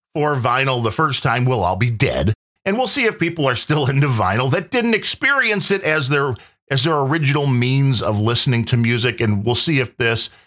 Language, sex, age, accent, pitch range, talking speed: English, male, 40-59, American, 120-165 Hz, 220 wpm